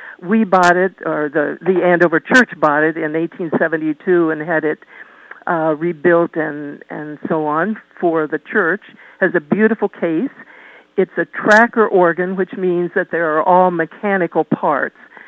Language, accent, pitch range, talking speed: English, American, 160-195 Hz, 160 wpm